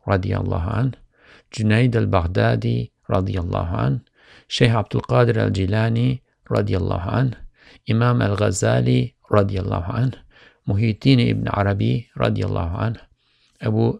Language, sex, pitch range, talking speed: English, male, 95-120 Hz, 50 wpm